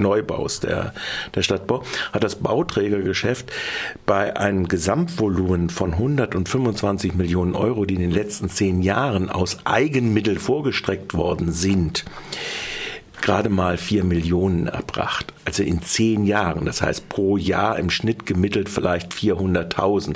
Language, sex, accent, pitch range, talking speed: German, male, German, 90-110 Hz, 130 wpm